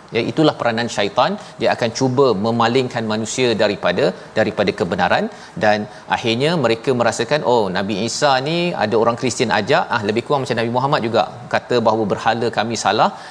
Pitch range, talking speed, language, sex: 110-130 Hz, 160 wpm, Malayalam, male